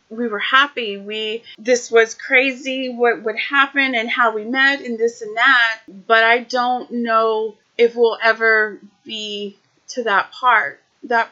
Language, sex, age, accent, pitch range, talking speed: English, female, 30-49, American, 220-265 Hz, 160 wpm